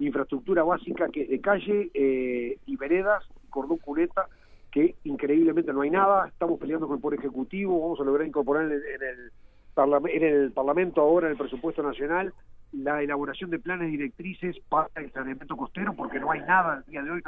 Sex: male